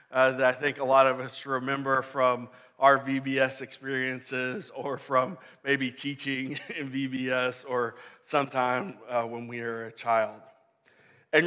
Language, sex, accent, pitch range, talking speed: English, male, American, 130-155 Hz, 145 wpm